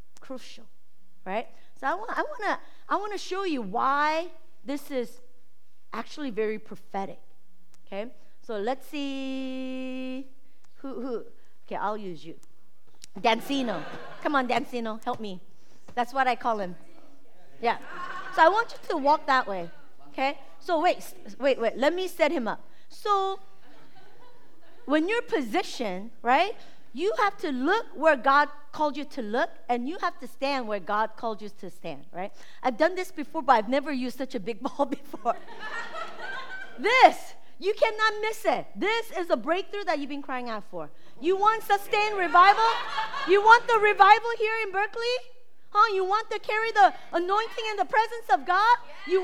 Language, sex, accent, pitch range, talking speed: English, female, American, 245-400 Hz, 170 wpm